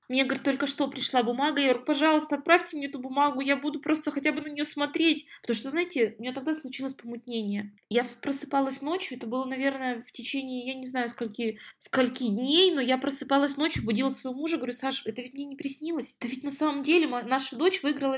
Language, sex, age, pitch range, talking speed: Russian, female, 20-39, 220-280 Hz, 215 wpm